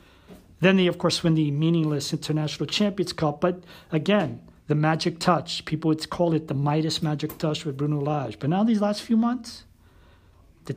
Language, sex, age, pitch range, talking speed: English, male, 40-59, 135-170 Hz, 185 wpm